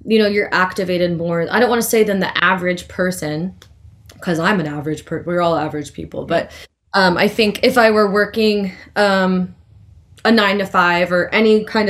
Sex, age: female, 20-39